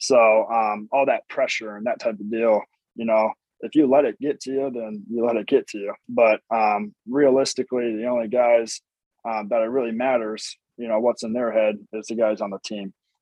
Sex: male